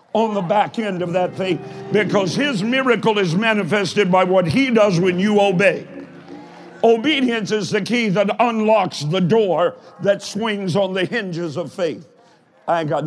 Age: 60-79